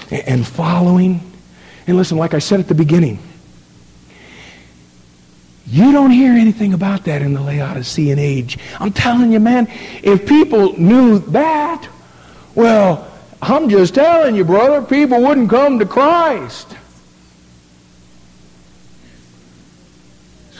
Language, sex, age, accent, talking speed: English, male, 50-69, American, 120 wpm